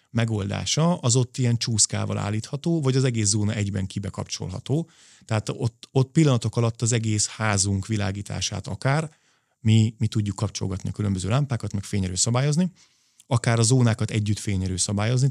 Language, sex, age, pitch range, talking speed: Hungarian, male, 30-49, 100-125 Hz, 150 wpm